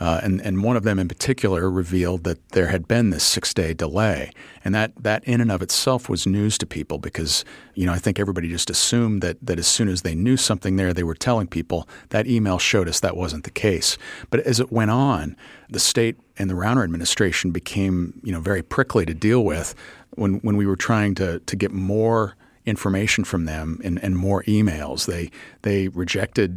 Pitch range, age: 90-110 Hz, 40-59